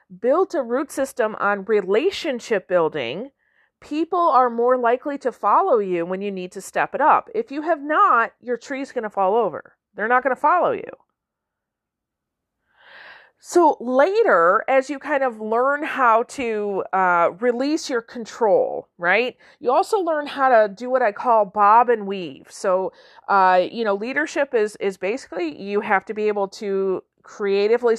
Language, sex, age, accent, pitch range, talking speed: English, female, 40-59, American, 205-285 Hz, 170 wpm